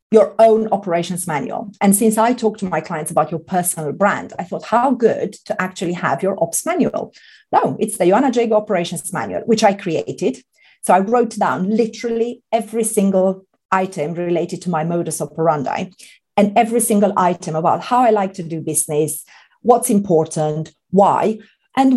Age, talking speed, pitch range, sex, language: 40-59, 170 wpm, 180-230 Hz, female, English